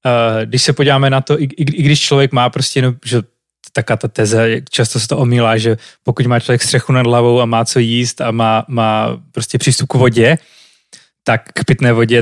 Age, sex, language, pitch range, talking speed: 20-39, male, Slovak, 120-145 Hz, 190 wpm